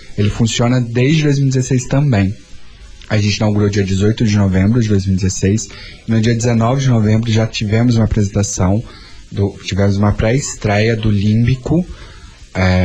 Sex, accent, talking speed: male, Brazilian, 145 wpm